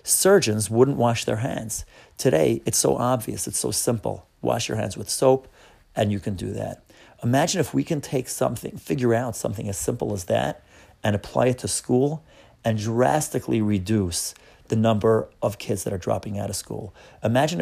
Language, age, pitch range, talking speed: English, 40-59, 105-125 Hz, 185 wpm